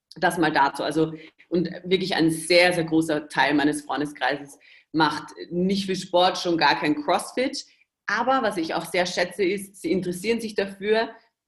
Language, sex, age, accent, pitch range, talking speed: German, female, 40-59, German, 165-205 Hz, 165 wpm